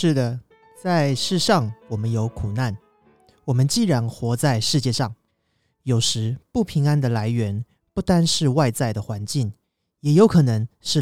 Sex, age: male, 30-49